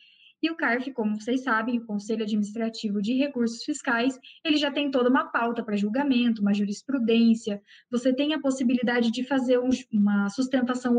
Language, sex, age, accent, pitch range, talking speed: Portuguese, female, 20-39, Brazilian, 225-275 Hz, 165 wpm